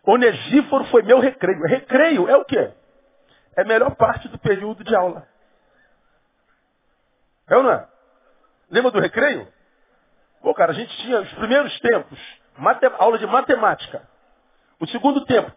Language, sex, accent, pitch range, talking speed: Portuguese, male, Brazilian, 155-260 Hz, 150 wpm